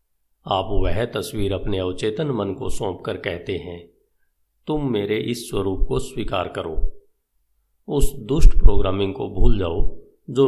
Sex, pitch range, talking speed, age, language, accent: male, 85-115 Hz, 135 wpm, 50-69, Hindi, native